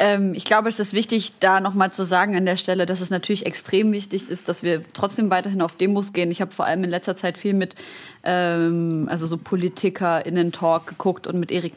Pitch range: 170-200 Hz